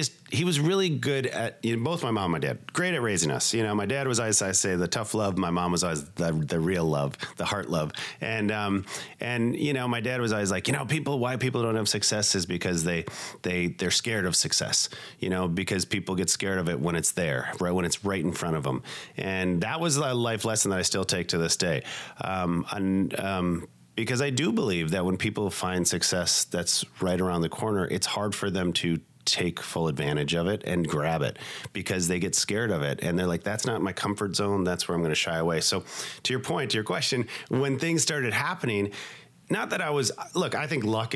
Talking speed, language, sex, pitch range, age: 240 wpm, English, male, 90-120 Hz, 40-59